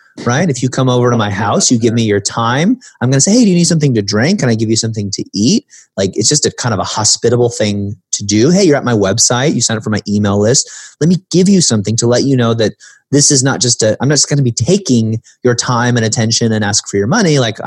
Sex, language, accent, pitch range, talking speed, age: male, English, American, 100-130 Hz, 290 wpm, 30-49